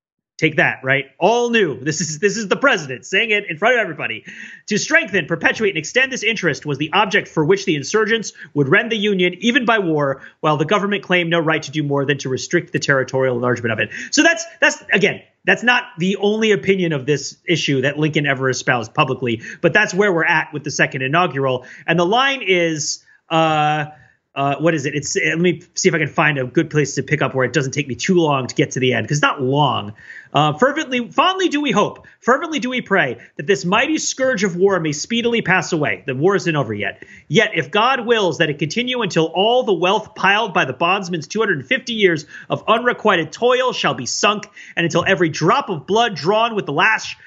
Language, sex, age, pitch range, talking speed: English, male, 30-49, 150-220 Hz, 225 wpm